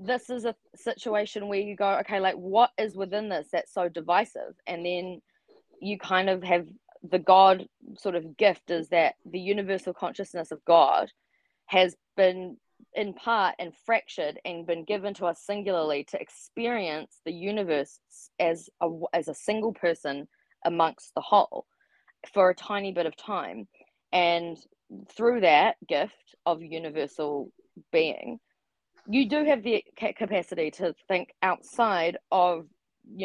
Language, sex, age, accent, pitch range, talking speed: English, female, 20-39, Australian, 165-210 Hz, 145 wpm